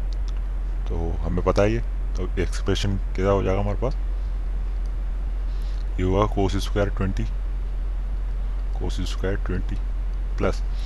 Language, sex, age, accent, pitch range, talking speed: Hindi, male, 20-39, native, 80-105 Hz, 105 wpm